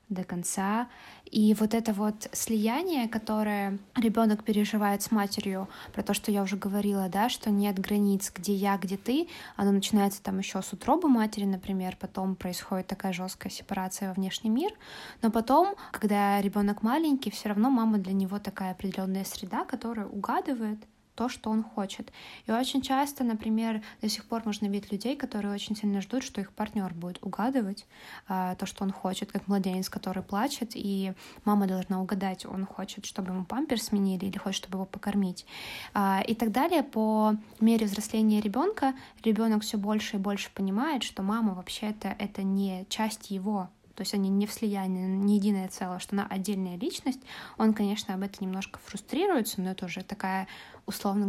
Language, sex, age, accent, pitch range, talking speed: Ukrainian, female, 20-39, native, 195-225 Hz, 170 wpm